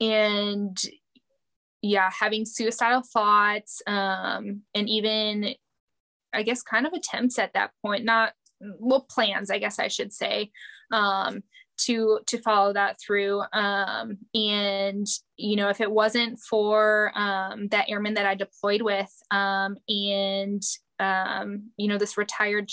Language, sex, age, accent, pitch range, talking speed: English, female, 10-29, American, 200-225 Hz, 135 wpm